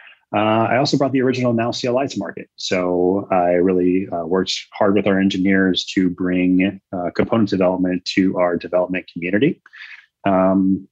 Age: 30-49